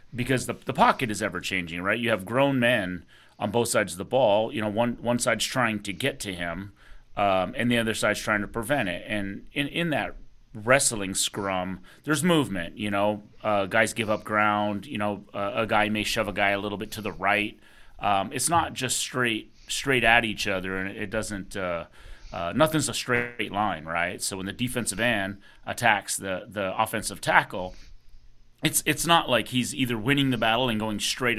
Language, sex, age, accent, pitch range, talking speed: English, male, 30-49, American, 100-120 Hz, 210 wpm